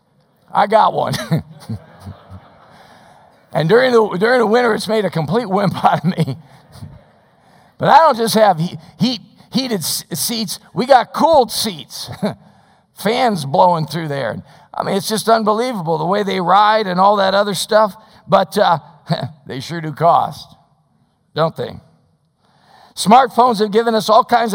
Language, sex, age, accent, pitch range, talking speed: English, male, 50-69, American, 160-215 Hz, 150 wpm